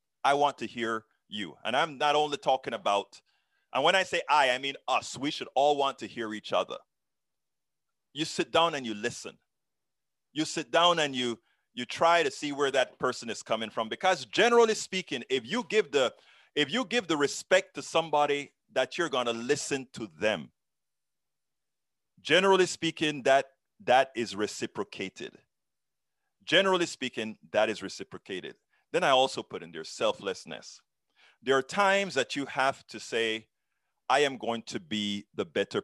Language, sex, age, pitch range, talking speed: English, male, 30-49, 115-165 Hz, 170 wpm